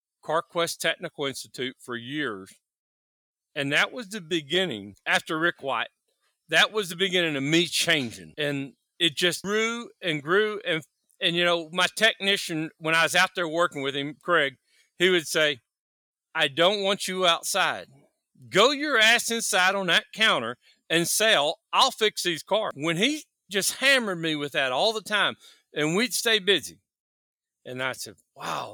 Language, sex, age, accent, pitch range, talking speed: English, male, 40-59, American, 150-205 Hz, 165 wpm